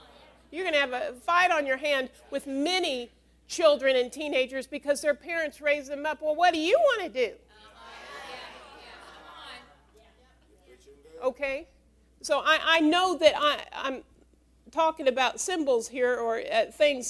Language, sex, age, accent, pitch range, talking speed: English, female, 50-69, American, 265-335 Hz, 145 wpm